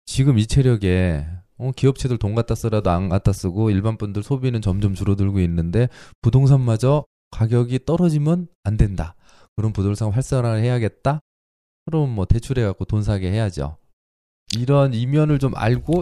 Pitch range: 95-130 Hz